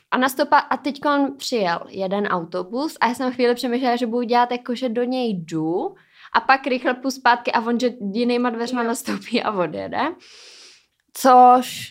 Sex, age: female, 20-39